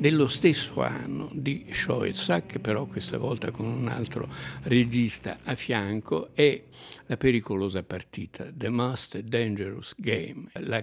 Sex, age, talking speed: male, 60-79, 125 wpm